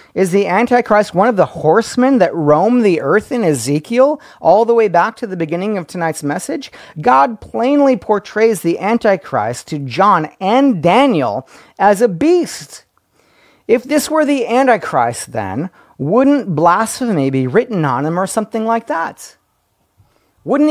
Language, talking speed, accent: English, 150 wpm, American